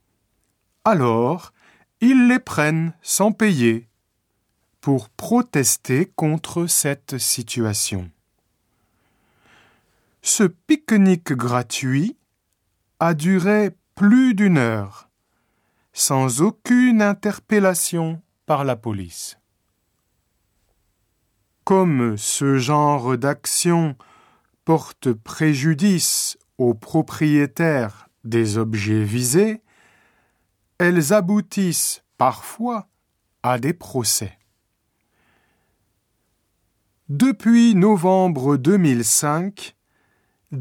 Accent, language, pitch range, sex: French, Japanese, 110-180 Hz, male